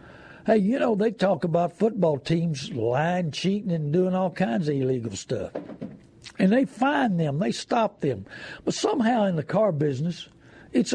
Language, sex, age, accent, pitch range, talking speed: English, male, 60-79, American, 150-210 Hz, 170 wpm